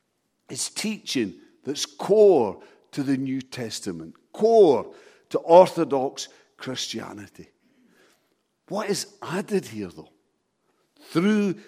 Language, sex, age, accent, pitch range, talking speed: English, male, 60-79, British, 135-200 Hz, 90 wpm